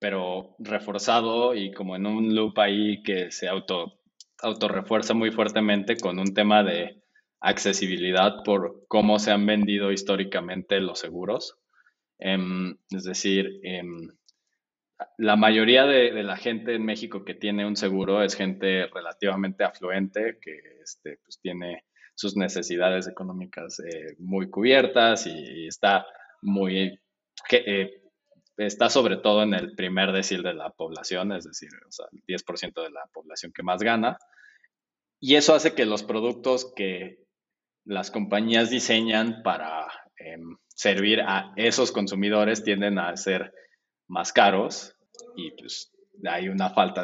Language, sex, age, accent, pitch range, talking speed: Spanish, male, 20-39, Mexican, 95-115 Hz, 140 wpm